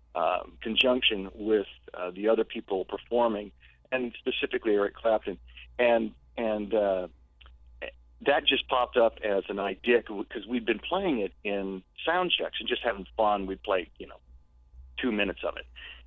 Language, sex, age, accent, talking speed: English, male, 50-69, American, 160 wpm